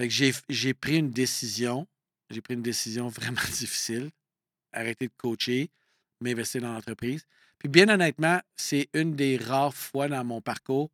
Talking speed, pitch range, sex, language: 165 wpm, 115-135 Hz, male, French